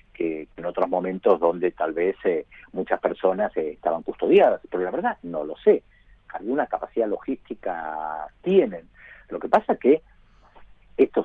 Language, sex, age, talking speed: Spanish, male, 50-69, 150 wpm